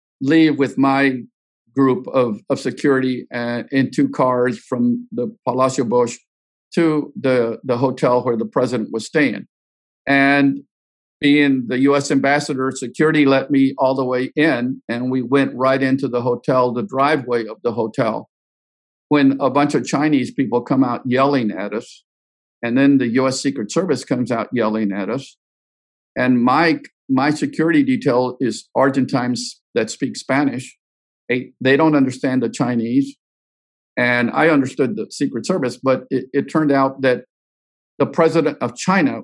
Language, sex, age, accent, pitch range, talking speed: English, male, 50-69, American, 120-140 Hz, 155 wpm